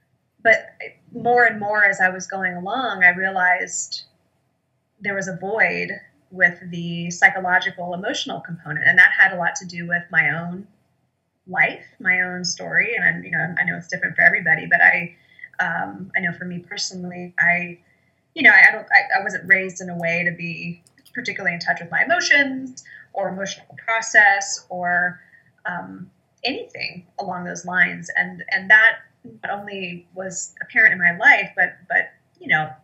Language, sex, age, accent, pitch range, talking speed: English, female, 20-39, American, 175-200 Hz, 170 wpm